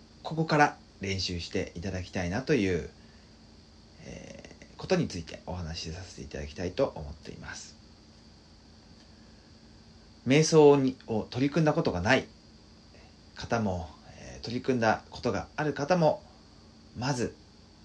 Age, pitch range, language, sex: 40-59, 75-115 Hz, Japanese, male